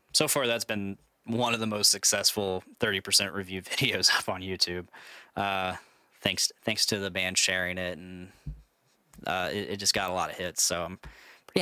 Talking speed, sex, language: 190 wpm, male, English